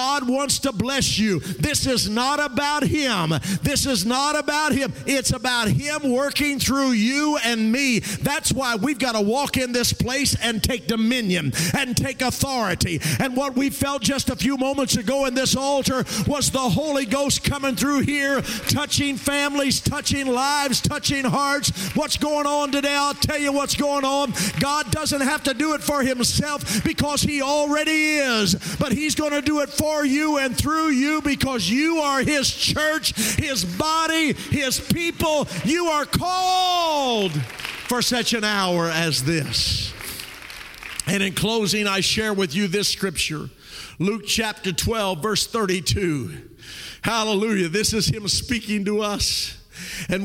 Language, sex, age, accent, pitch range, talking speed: English, male, 50-69, American, 195-280 Hz, 160 wpm